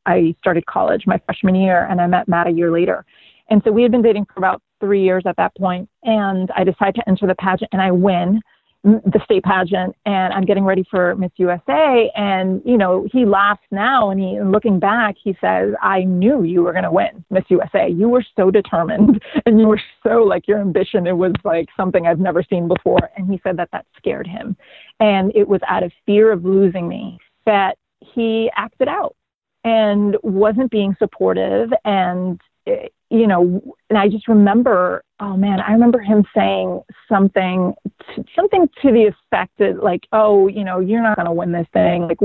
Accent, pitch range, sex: American, 185-220 Hz, female